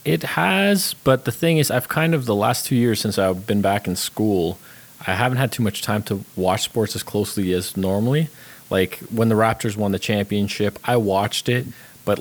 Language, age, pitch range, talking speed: English, 20-39, 95-120 Hz, 210 wpm